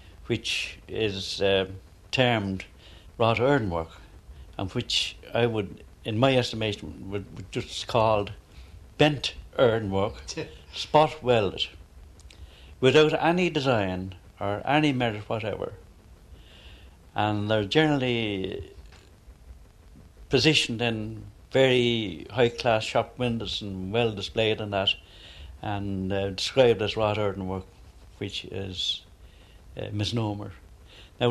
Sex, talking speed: male, 100 wpm